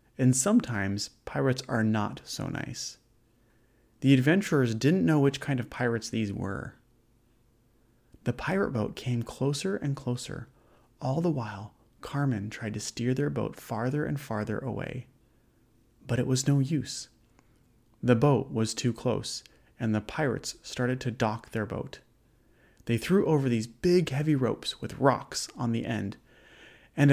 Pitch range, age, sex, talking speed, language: 115-140 Hz, 30-49, male, 150 wpm, English